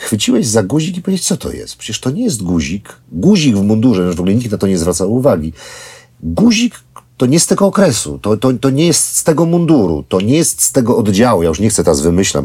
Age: 40-59